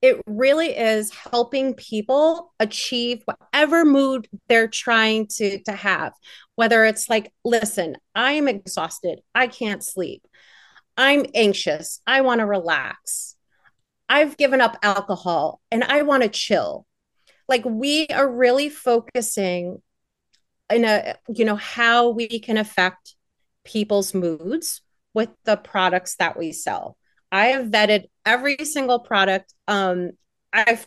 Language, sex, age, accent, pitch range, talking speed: English, female, 30-49, American, 200-255 Hz, 130 wpm